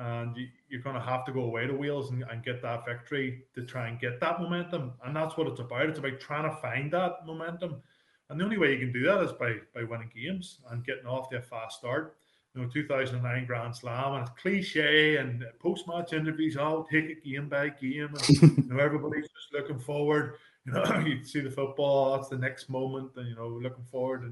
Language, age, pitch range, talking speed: English, 20-39, 125-155 Hz, 240 wpm